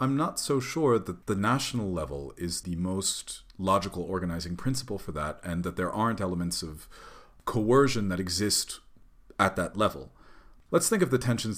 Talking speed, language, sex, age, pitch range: 170 wpm, English, male, 40-59, 85-110 Hz